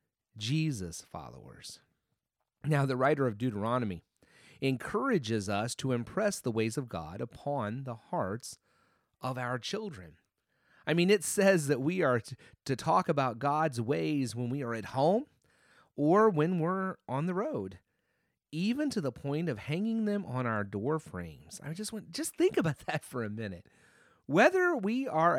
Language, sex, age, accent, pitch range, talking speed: English, male, 30-49, American, 125-200 Hz, 165 wpm